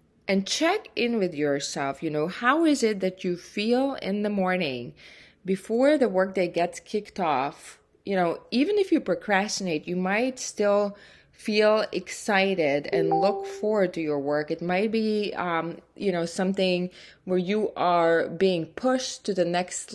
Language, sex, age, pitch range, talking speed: English, female, 20-39, 180-220 Hz, 160 wpm